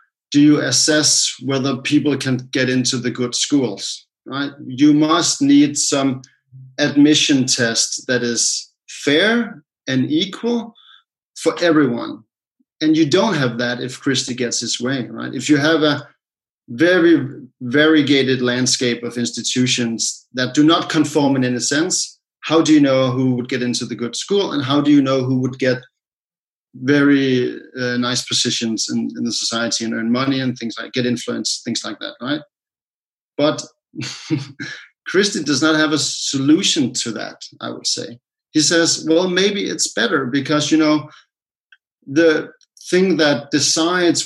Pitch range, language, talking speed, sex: 125-150 Hz, English, 160 wpm, male